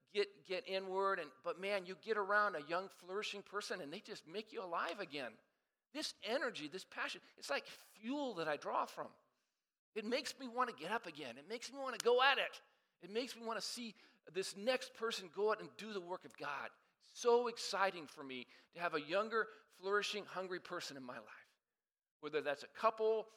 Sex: male